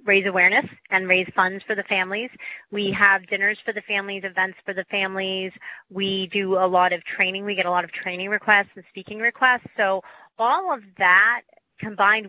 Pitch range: 190-230 Hz